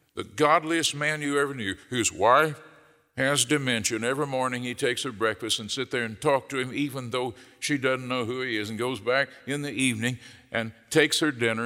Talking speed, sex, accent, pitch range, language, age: 215 wpm, male, American, 115-150 Hz, English, 60-79